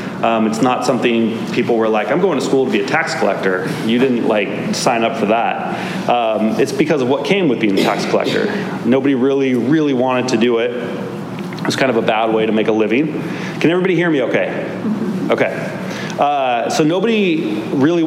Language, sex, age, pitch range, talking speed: English, male, 30-49, 120-160 Hz, 205 wpm